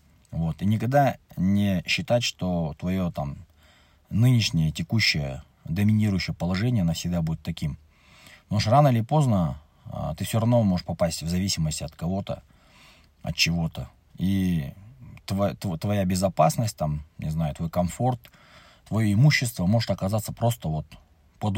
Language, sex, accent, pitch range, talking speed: Russian, male, native, 80-105 Hz, 130 wpm